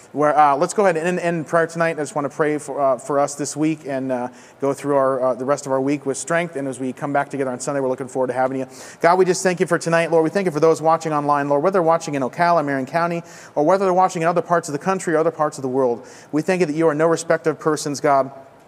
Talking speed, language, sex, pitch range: 310 wpm, English, male, 140-175 Hz